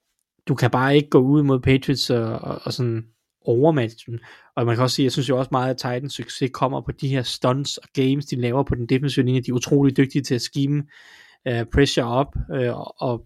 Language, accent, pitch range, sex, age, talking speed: Danish, native, 120-140 Hz, male, 20-39, 230 wpm